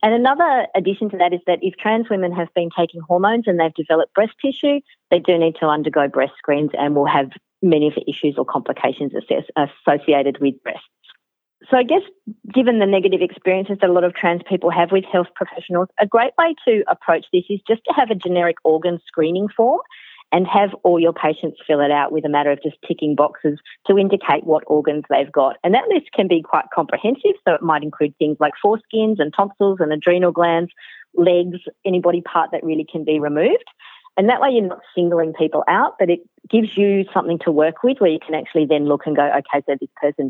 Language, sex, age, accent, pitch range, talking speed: English, female, 40-59, Australian, 155-200 Hz, 220 wpm